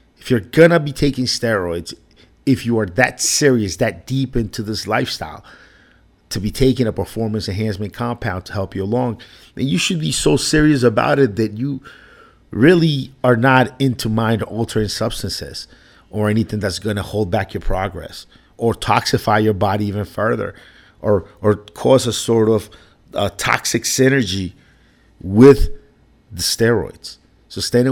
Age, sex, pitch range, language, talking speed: 50-69, male, 105-125 Hz, English, 155 wpm